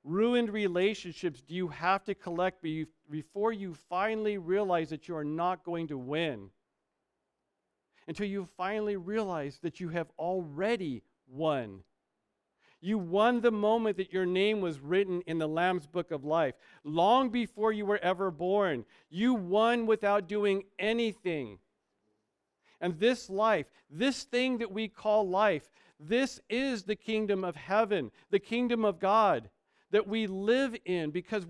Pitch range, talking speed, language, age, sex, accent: 170-215 Hz, 145 wpm, English, 50-69, male, American